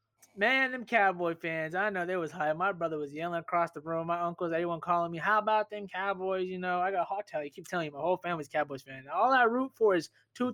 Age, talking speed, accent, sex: 20-39, 270 wpm, American, male